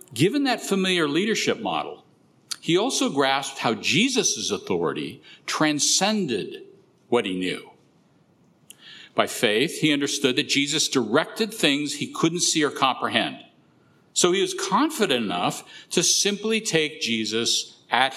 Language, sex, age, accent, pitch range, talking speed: English, male, 50-69, American, 145-235 Hz, 125 wpm